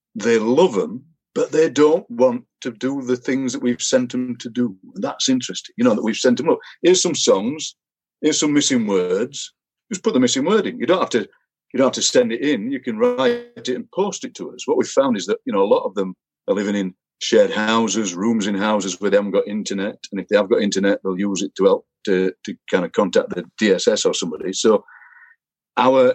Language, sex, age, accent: English, male, 50-69, British